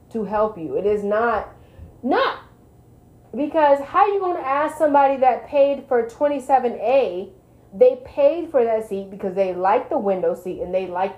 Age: 30-49